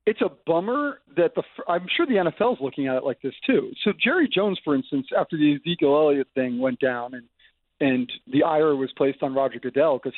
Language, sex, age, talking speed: English, male, 40-59, 225 wpm